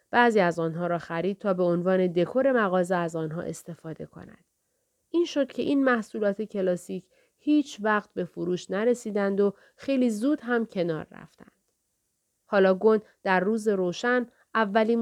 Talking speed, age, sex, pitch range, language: 150 wpm, 30-49, female, 175-240 Hz, Persian